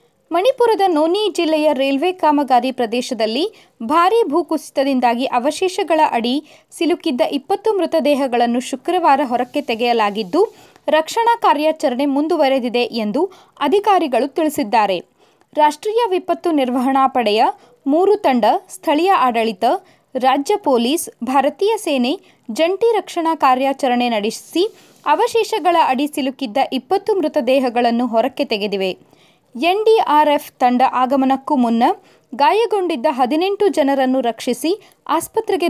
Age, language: 20-39, Kannada